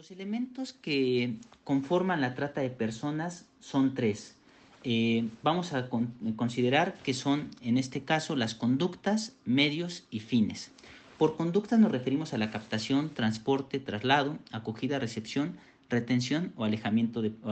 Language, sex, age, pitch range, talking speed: Spanish, male, 40-59, 120-150 Hz, 145 wpm